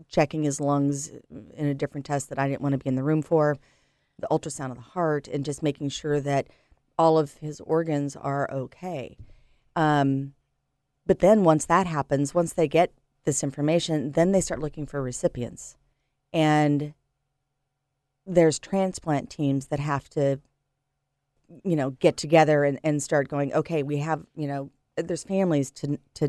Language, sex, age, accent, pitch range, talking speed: English, female, 40-59, American, 140-160 Hz, 170 wpm